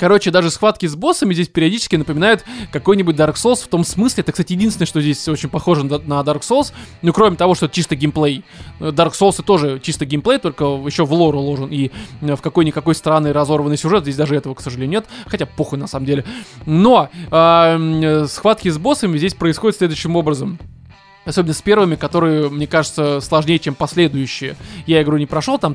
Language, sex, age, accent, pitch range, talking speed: Russian, male, 20-39, native, 155-195 Hz, 190 wpm